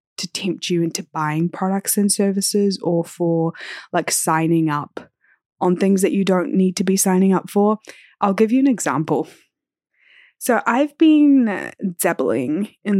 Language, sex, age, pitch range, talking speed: English, female, 20-39, 165-200 Hz, 155 wpm